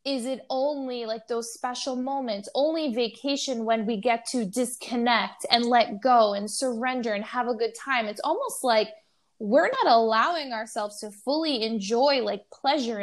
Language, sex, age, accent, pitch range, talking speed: English, female, 10-29, American, 215-270 Hz, 165 wpm